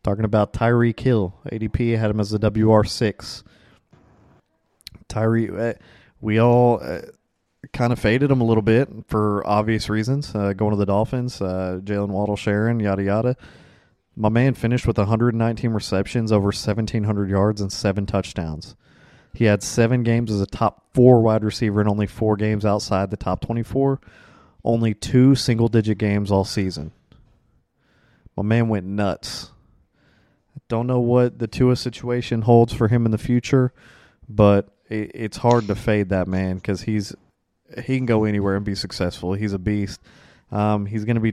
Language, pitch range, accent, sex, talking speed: English, 100-120 Hz, American, male, 160 wpm